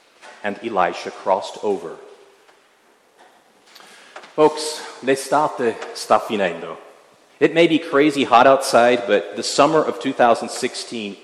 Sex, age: male, 50-69